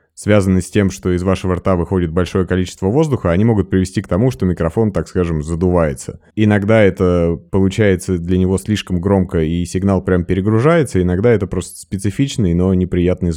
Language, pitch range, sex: Russian, 85-100 Hz, male